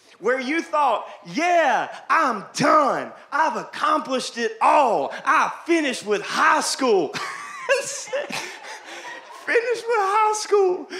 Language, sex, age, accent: English, male, 30-49, American